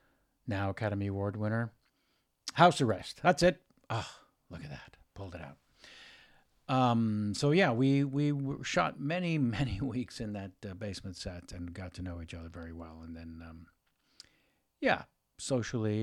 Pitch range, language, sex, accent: 100-140 Hz, English, male, American